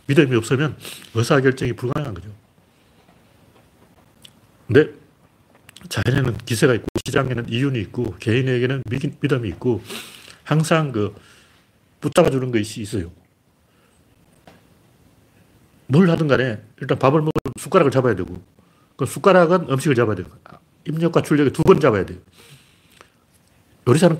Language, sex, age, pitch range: Korean, male, 40-59, 105-145 Hz